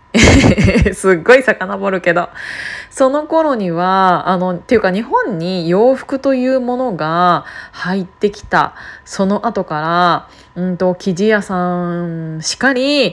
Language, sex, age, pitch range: Japanese, female, 20-39, 180-240 Hz